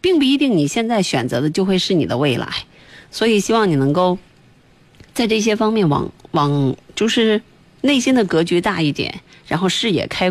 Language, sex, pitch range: Chinese, female, 170-220 Hz